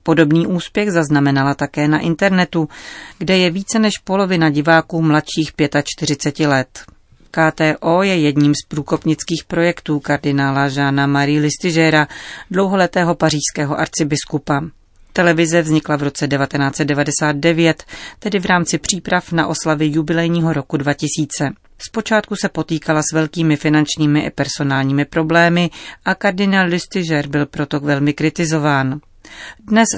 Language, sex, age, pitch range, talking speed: Czech, female, 40-59, 145-170 Hz, 120 wpm